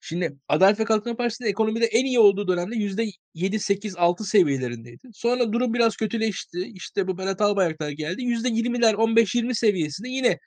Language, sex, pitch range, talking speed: Turkish, male, 180-230 Hz, 140 wpm